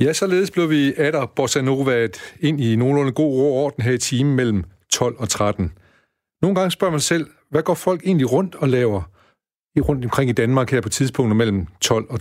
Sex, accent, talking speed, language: male, native, 205 wpm, Danish